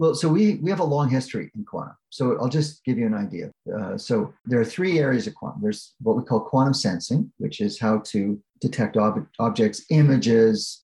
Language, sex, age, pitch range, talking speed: English, male, 40-59, 110-160 Hz, 215 wpm